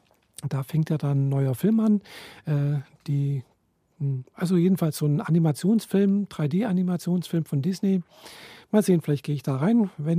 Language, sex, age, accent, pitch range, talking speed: German, male, 50-69, German, 150-185 Hz, 155 wpm